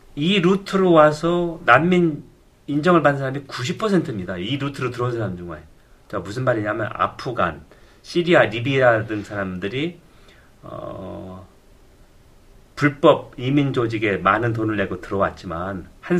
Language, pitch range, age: Korean, 110-160 Hz, 40-59